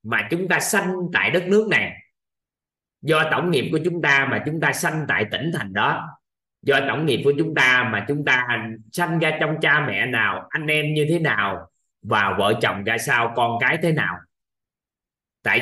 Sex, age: male, 20-39